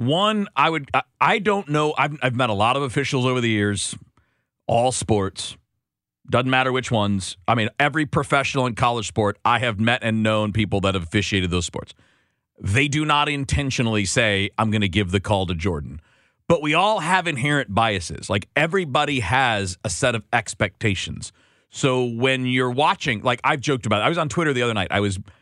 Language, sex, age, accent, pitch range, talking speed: English, male, 40-59, American, 105-150 Hz, 200 wpm